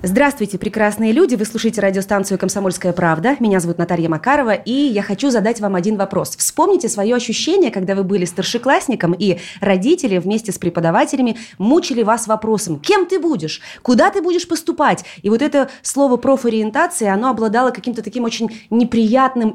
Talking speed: 155 wpm